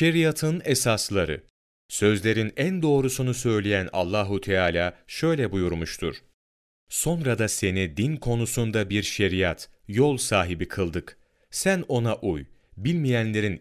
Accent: native